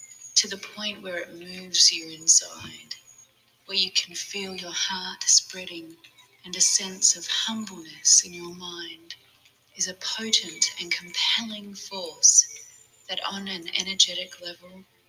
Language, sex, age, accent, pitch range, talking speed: English, female, 30-49, Australian, 165-195 Hz, 135 wpm